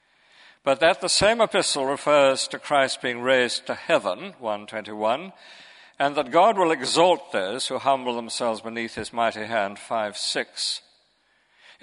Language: English